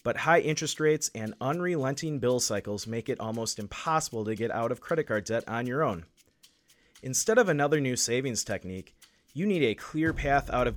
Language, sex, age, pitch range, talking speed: English, male, 30-49, 110-155 Hz, 195 wpm